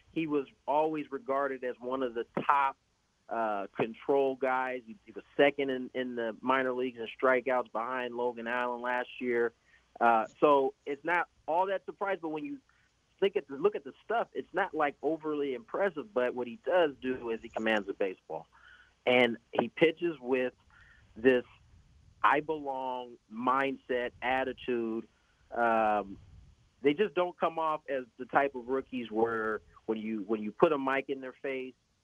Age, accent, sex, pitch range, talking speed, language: 30-49, American, male, 115-140 Hz, 165 wpm, English